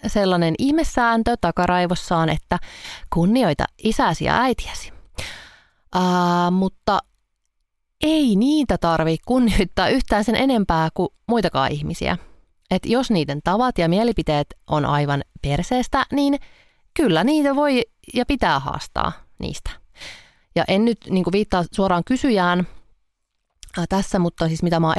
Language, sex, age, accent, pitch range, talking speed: Finnish, female, 30-49, native, 165-255 Hz, 120 wpm